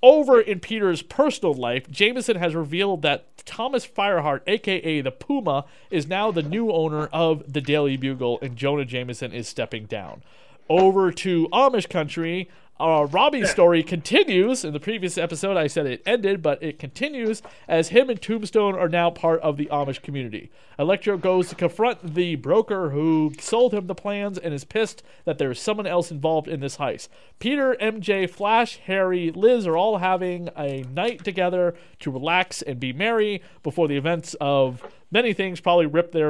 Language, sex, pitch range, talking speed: English, male, 155-215 Hz, 175 wpm